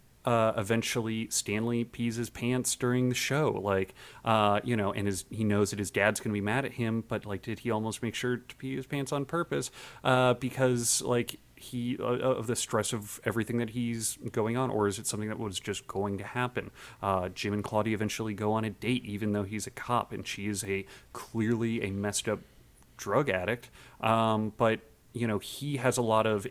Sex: male